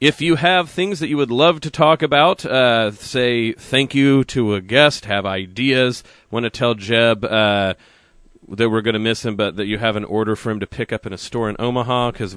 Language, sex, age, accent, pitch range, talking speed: English, male, 30-49, American, 100-130 Hz, 235 wpm